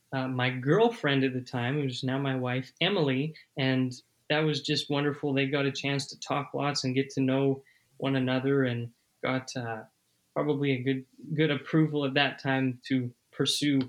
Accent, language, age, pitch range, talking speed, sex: American, English, 20-39, 130-150 Hz, 185 wpm, male